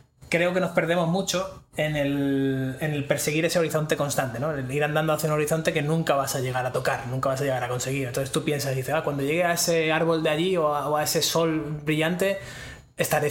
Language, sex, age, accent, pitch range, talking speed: Spanish, male, 20-39, Spanish, 140-160 Hz, 245 wpm